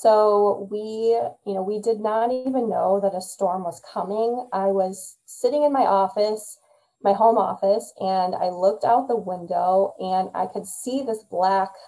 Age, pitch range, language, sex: 20-39, 190-220 Hz, English, female